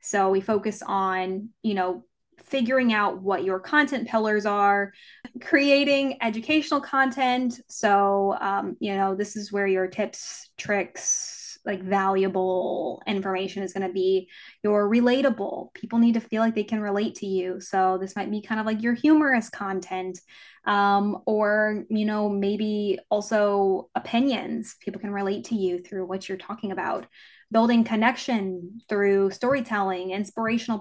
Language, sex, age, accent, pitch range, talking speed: English, female, 10-29, American, 190-225 Hz, 150 wpm